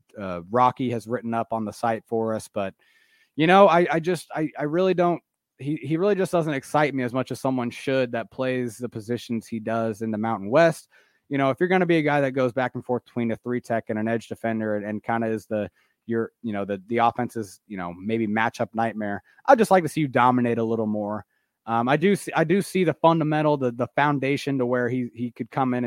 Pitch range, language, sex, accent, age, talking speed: 115-150 Hz, English, male, American, 30-49, 255 wpm